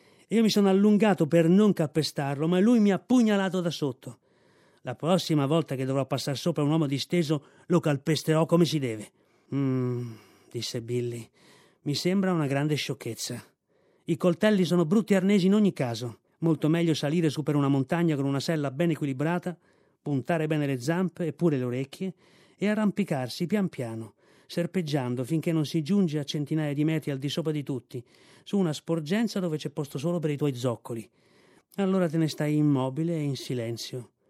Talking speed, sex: 180 wpm, male